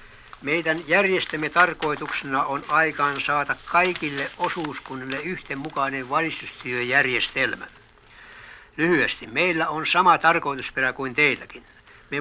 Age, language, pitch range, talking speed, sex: 60-79, Finnish, 140-165 Hz, 90 wpm, male